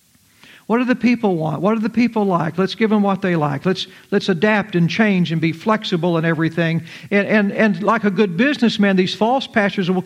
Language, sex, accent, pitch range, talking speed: English, male, American, 170-225 Hz, 215 wpm